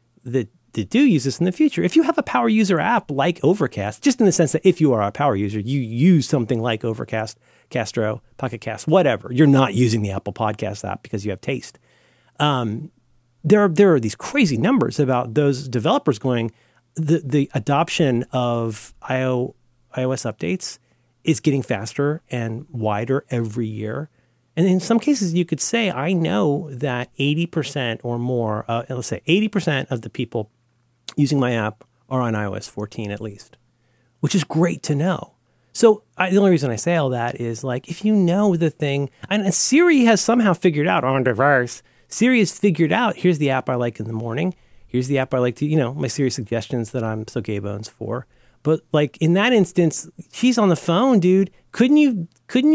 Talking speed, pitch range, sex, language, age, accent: 195 wpm, 120-175 Hz, male, English, 40-59, American